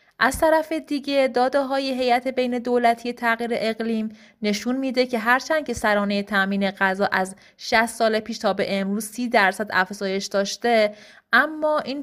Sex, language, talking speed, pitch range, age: female, Persian, 155 wpm, 200-245 Hz, 30-49